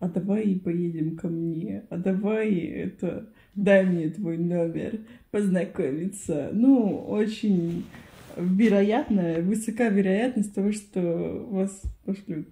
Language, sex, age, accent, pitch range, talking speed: Russian, female, 20-39, native, 175-230 Hz, 105 wpm